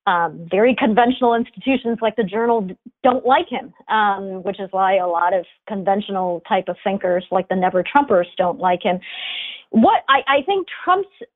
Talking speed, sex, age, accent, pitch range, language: 175 wpm, female, 40-59, American, 200-260 Hz, English